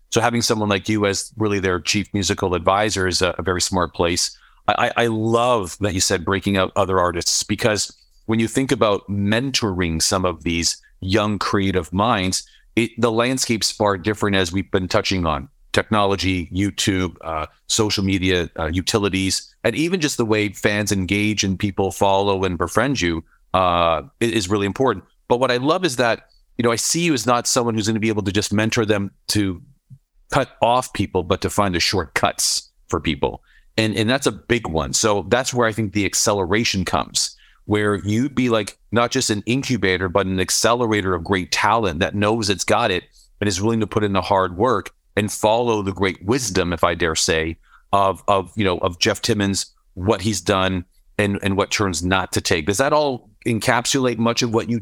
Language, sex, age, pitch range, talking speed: English, male, 40-59, 95-115 Hz, 200 wpm